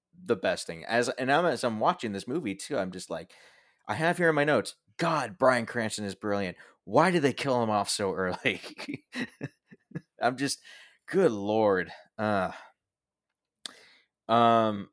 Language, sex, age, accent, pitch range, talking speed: English, male, 20-39, American, 90-105 Hz, 160 wpm